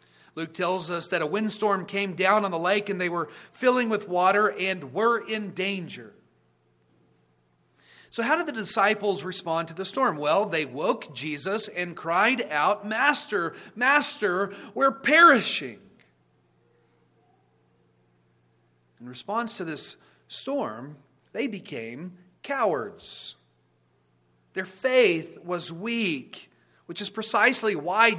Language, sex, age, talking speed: English, male, 40-59, 120 wpm